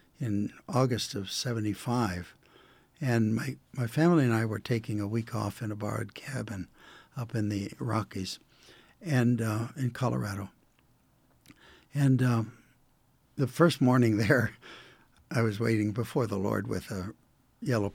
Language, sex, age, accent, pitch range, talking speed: English, male, 60-79, American, 110-135 Hz, 140 wpm